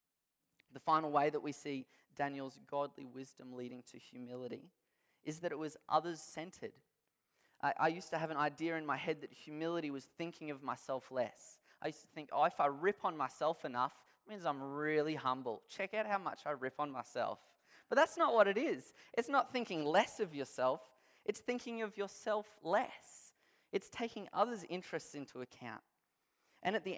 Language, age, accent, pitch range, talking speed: English, 20-39, Australian, 140-185 Hz, 185 wpm